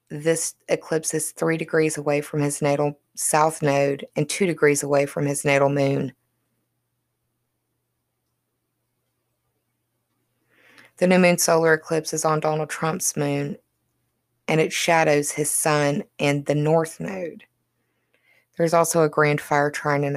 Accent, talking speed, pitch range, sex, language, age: American, 135 wpm, 140-155 Hz, female, English, 20-39